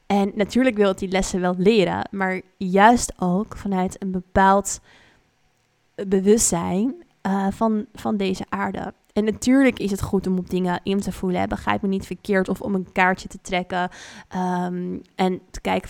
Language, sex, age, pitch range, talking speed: Dutch, female, 20-39, 185-210 Hz, 175 wpm